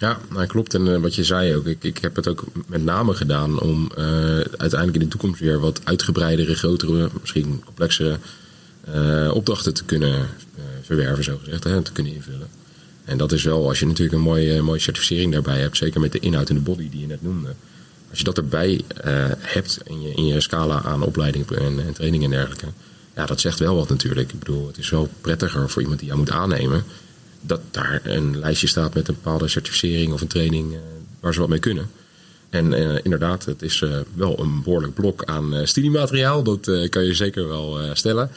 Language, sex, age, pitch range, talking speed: Dutch, male, 30-49, 75-90 Hz, 210 wpm